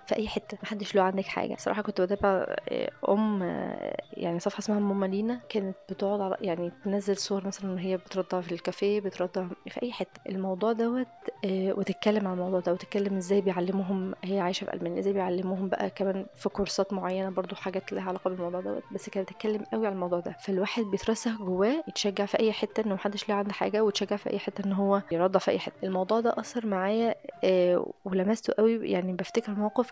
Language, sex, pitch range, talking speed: Arabic, female, 190-215 Hz, 190 wpm